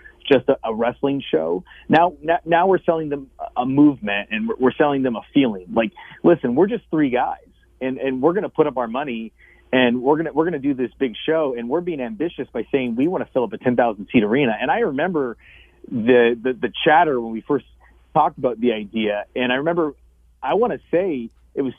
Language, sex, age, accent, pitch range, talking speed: English, male, 30-49, American, 130-185 Hz, 220 wpm